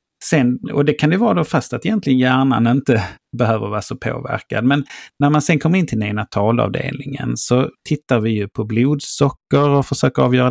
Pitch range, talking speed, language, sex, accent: 115-150 Hz, 195 wpm, English, male, Swedish